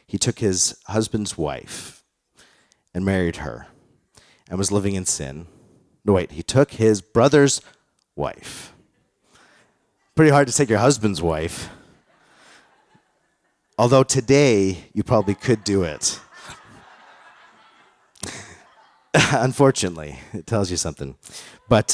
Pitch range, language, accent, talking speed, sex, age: 85-120 Hz, English, American, 110 wpm, male, 40-59